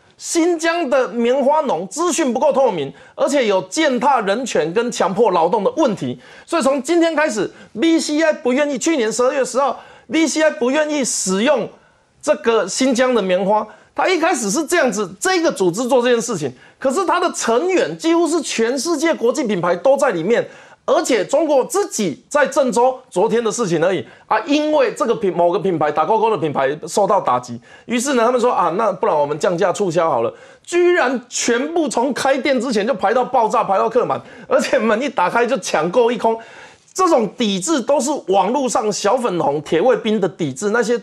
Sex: male